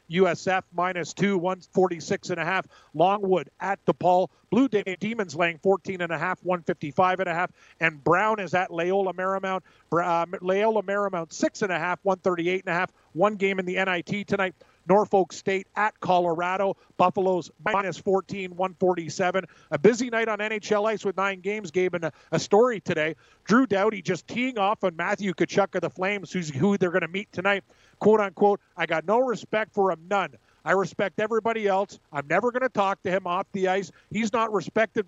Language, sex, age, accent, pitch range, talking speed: English, male, 40-59, American, 175-200 Hz, 175 wpm